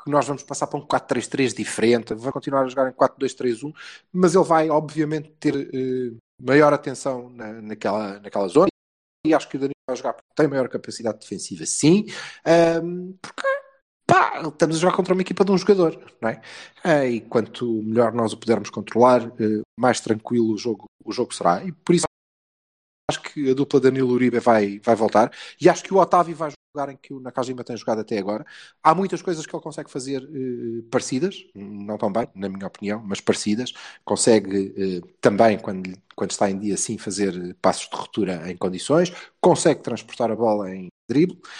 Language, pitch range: Portuguese, 110-150 Hz